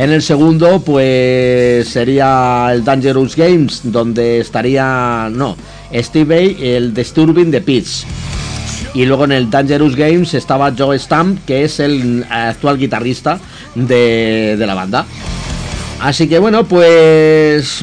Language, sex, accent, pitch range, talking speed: Spanish, male, Spanish, 125-160 Hz, 130 wpm